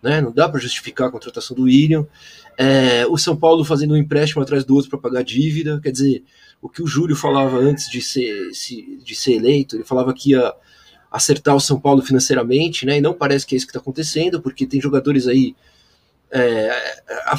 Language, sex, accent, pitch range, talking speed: Portuguese, male, Brazilian, 135-165 Hz, 205 wpm